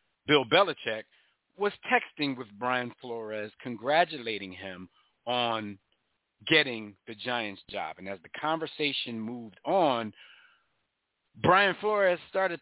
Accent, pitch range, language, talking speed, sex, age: American, 100-140 Hz, English, 110 wpm, male, 50-69